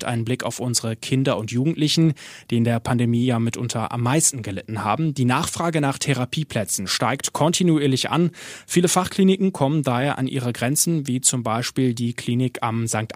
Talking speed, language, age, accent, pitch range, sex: 175 wpm, German, 10-29, German, 120-155 Hz, male